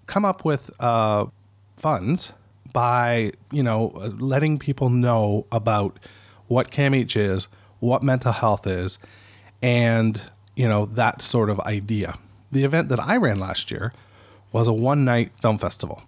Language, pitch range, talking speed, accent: English, 100-125 Hz, 145 wpm, American